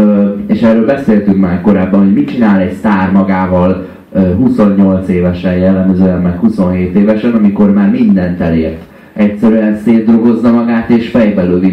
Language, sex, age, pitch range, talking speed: Hungarian, male, 30-49, 95-115 Hz, 135 wpm